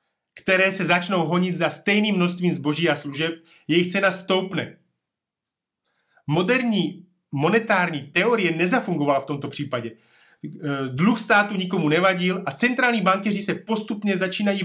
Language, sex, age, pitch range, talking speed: Slovak, male, 30-49, 160-200 Hz, 125 wpm